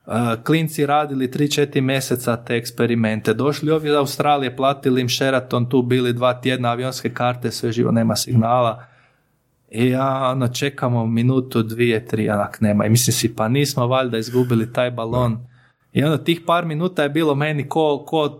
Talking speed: 170 wpm